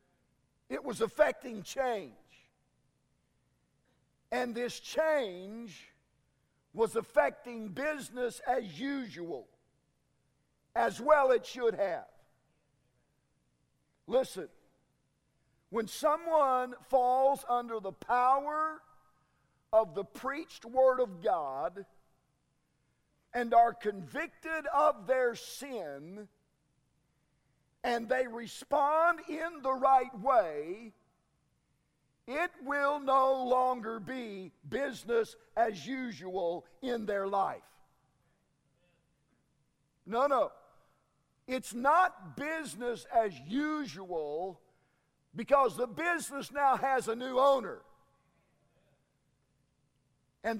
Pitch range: 180-280 Hz